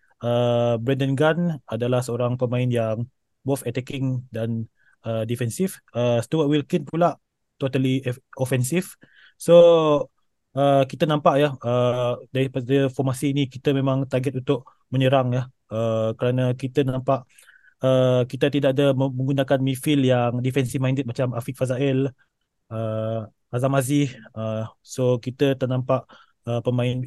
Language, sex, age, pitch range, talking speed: Malay, male, 20-39, 125-140 Hz, 130 wpm